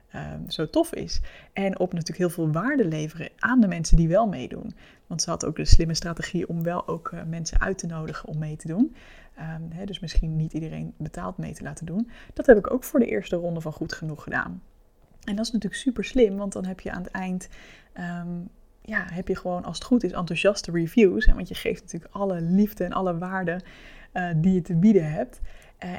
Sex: female